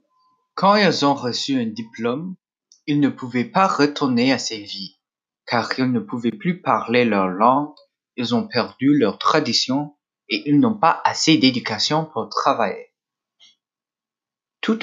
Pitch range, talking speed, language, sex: 120-190 Hz, 145 wpm, French, male